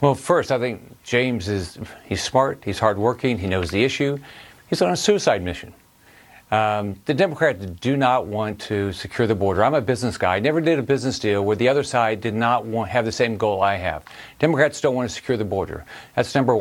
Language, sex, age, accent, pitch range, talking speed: English, male, 50-69, American, 110-150 Hz, 220 wpm